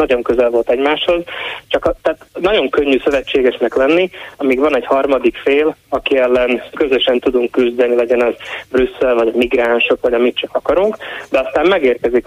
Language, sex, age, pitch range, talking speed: Hungarian, male, 20-39, 125-155 Hz, 155 wpm